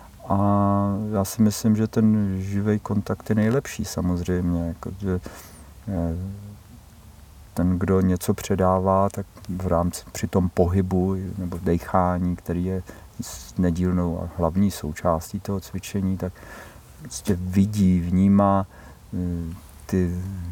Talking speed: 110 wpm